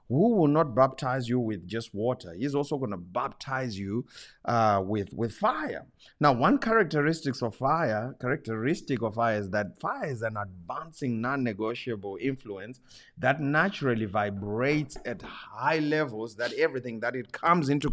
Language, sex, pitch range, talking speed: English, male, 115-145 Hz, 155 wpm